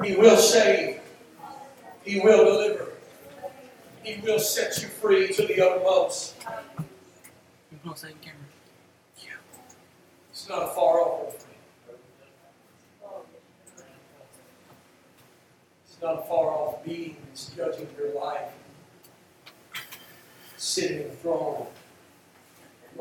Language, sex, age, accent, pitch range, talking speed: English, male, 60-79, American, 160-190 Hz, 80 wpm